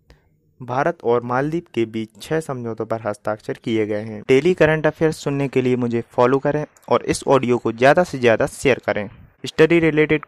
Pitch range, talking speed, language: 110-150 Hz, 185 wpm, Hindi